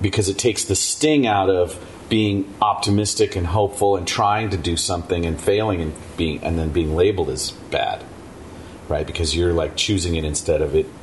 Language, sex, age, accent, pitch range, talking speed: English, male, 40-59, American, 80-105 Hz, 190 wpm